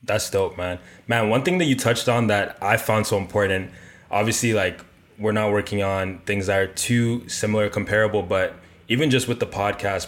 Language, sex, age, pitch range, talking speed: English, male, 20-39, 95-105 Hz, 195 wpm